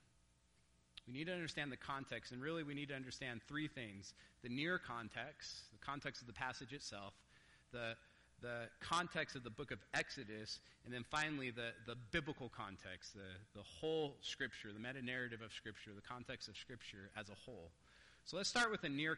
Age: 30-49